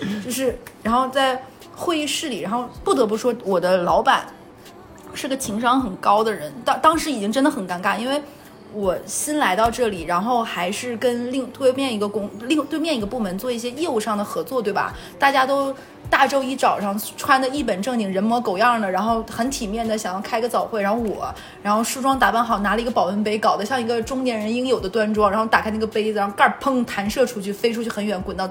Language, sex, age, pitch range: Chinese, female, 20-39, 205-260 Hz